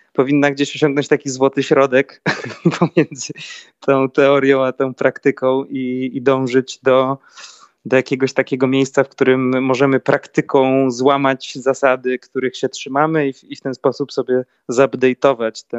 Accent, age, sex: native, 20-39, male